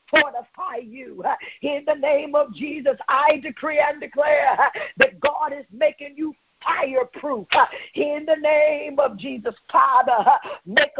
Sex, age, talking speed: female, 50-69, 130 wpm